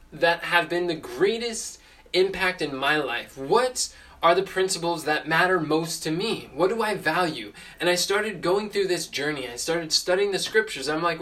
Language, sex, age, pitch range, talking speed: English, male, 20-39, 155-190 Hz, 195 wpm